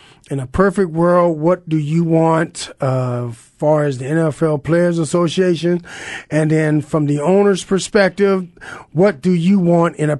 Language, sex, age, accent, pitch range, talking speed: English, male, 40-59, American, 145-175 Hz, 160 wpm